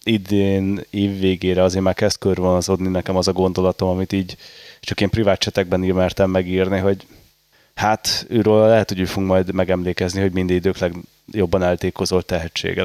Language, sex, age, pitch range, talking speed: Hungarian, male, 30-49, 95-110 Hz, 155 wpm